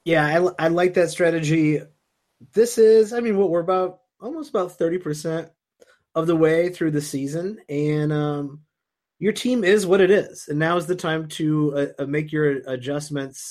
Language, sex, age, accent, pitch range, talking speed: English, male, 30-49, American, 140-170 Hz, 180 wpm